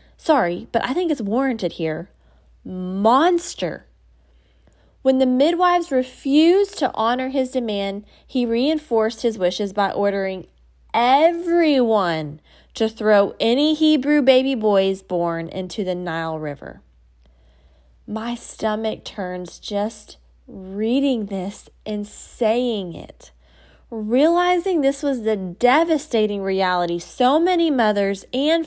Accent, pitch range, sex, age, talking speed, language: American, 180-275 Hz, female, 20-39, 110 wpm, English